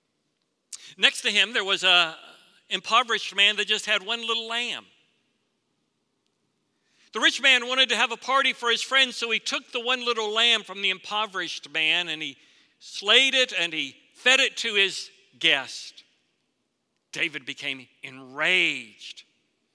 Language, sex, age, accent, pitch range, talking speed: English, male, 60-79, American, 135-200 Hz, 150 wpm